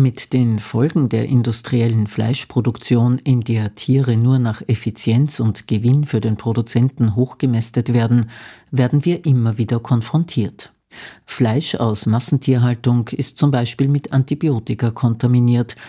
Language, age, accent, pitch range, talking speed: German, 50-69, Austrian, 115-135 Hz, 125 wpm